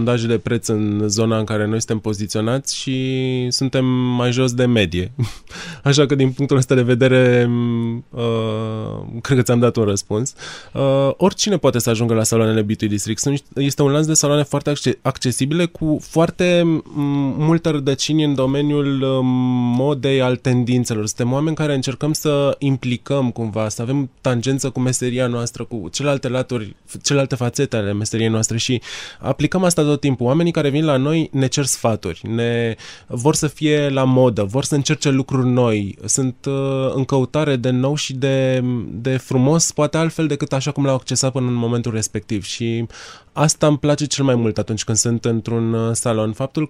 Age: 20-39